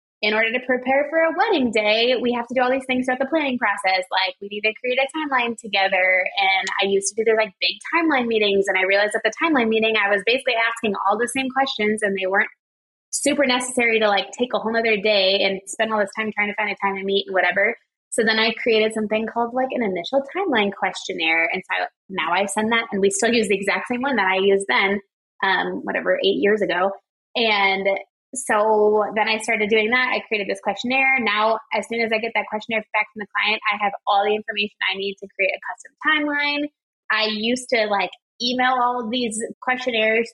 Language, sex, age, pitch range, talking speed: English, female, 20-39, 200-245 Hz, 230 wpm